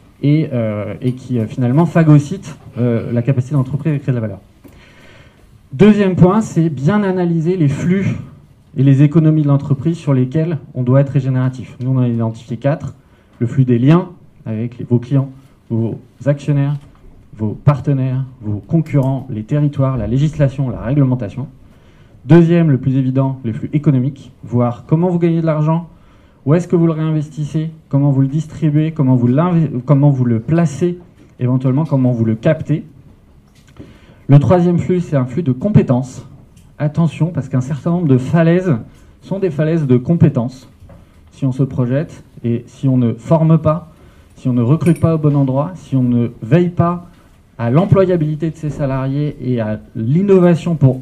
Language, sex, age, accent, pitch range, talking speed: French, male, 20-39, French, 125-160 Hz, 170 wpm